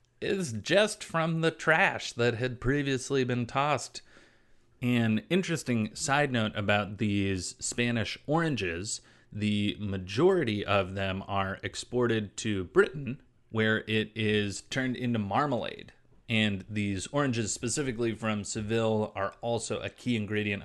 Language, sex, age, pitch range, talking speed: English, male, 30-49, 105-125 Hz, 125 wpm